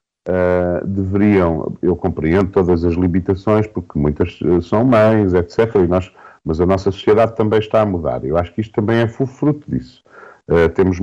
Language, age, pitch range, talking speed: Portuguese, 50-69, 90-125 Hz, 150 wpm